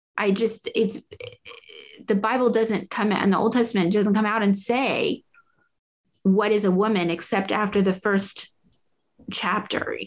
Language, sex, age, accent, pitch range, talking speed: English, female, 30-49, American, 210-305 Hz, 160 wpm